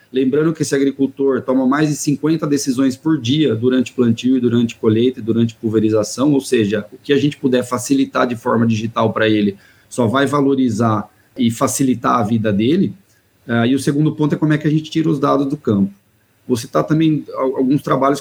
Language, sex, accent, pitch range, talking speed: Portuguese, male, Brazilian, 120-140 Hz, 195 wpm